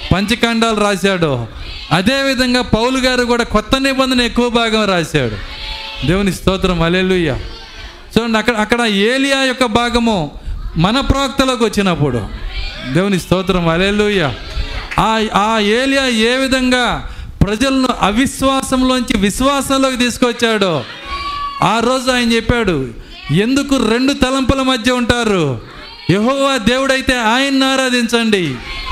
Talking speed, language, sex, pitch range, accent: 100 wpm, Telugu, male, 175-260 Hz, native